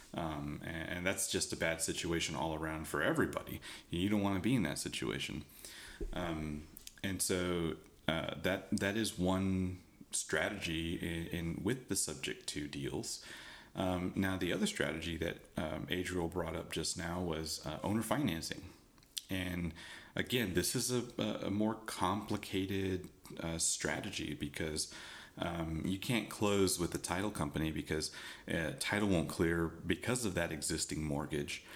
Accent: American